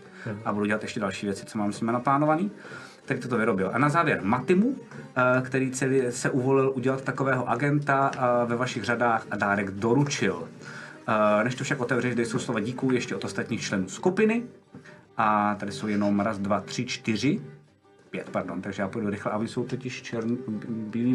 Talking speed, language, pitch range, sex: 180 wpm, Czech, 115-145 Hz, male